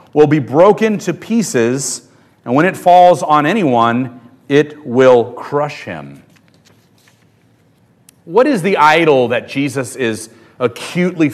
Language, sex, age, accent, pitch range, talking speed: English, male, 40-59, American, 125-195 Hz, 120 wpm